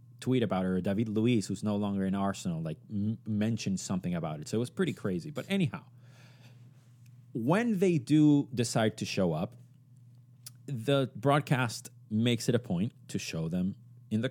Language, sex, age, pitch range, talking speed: English, male, 30-49, 100-145 Hz, 170 wpm